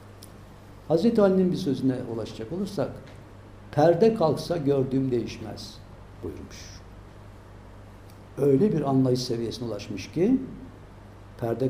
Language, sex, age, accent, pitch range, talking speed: Turkish, male, 60-79, native, 100-140 Hz, 90 wpm